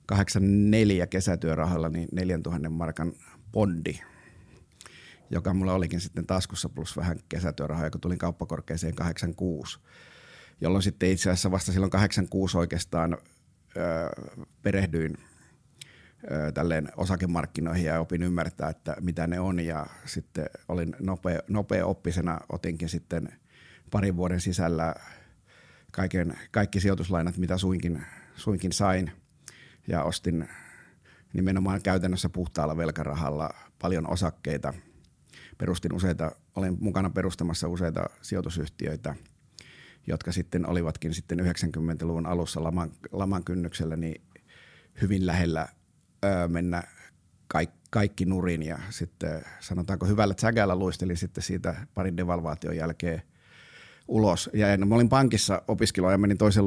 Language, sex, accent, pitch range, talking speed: Finnish, male, native, 85-95 Hz, 110 wpm